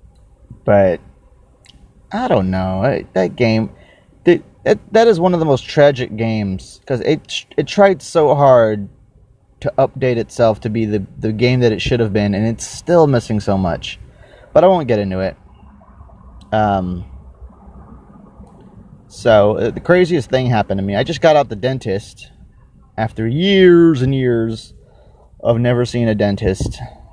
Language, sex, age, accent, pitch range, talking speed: English, male, 30-49, American, 95-120 Hz, 155 wpm